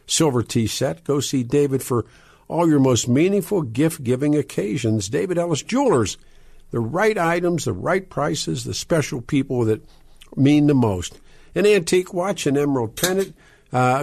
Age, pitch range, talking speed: 50-69, 135-175 Hz, 155 wpm